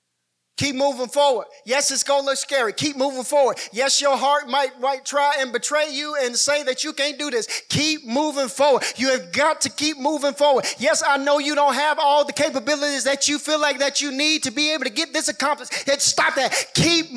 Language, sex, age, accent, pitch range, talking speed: English, male, 30-49, American, 260-310 Hz, 225 wpm